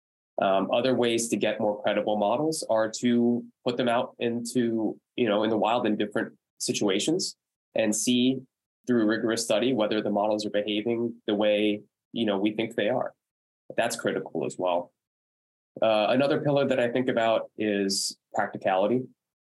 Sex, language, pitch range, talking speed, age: male, English, 100-115 Hz, 165 wpm, 20-39